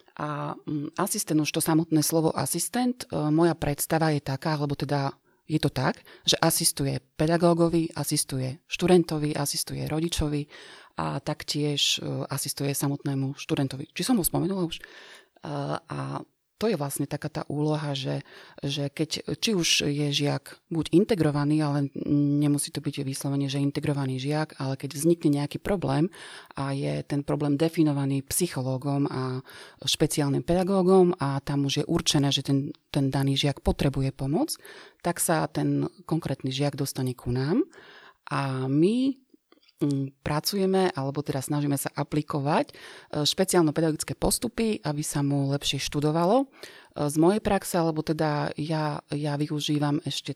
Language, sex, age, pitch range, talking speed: Slovak, female, 30-49, 140-165 Hz, 135 wpm